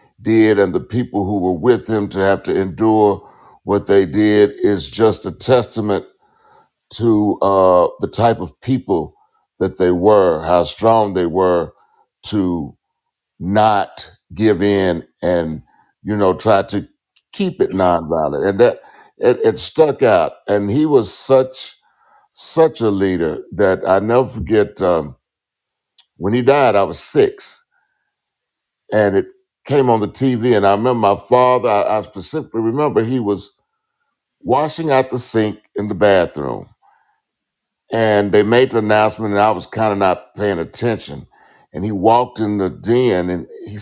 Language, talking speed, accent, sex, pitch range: English, 155 wpm, American, male, 95-130 Hz